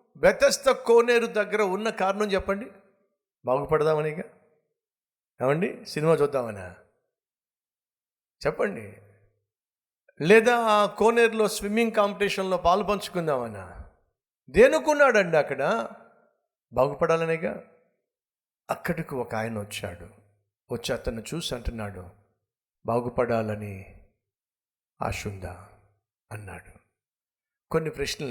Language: Telugu